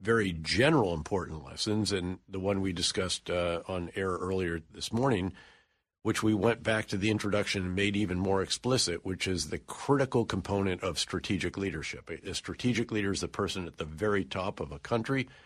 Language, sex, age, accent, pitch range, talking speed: English, male, 50-69, American, 90-105 Hz, 185 wpm